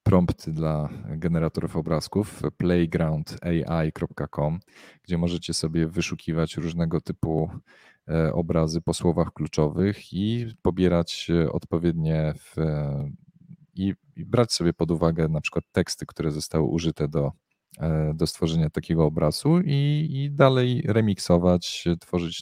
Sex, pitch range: male, 80-90 Hz